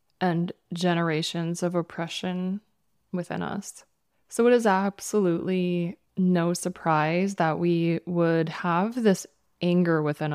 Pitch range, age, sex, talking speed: 175-205 Hz, 20-39, female, 110 wpm